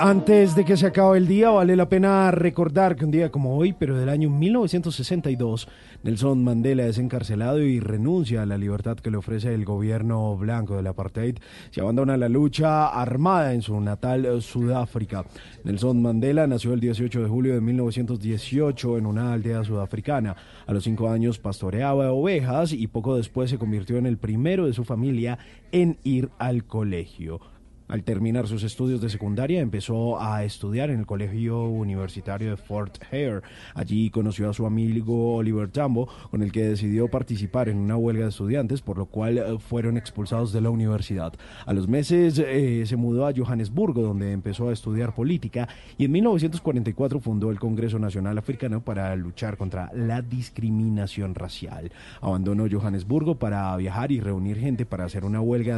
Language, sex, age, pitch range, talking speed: Spanish, male, 30-49, 105-130 Hz, 170 wpm